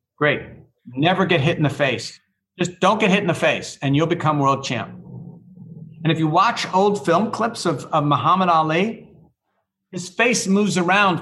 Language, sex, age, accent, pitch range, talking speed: English, male, 50-69, American, 140-180 Hz, 180 wpm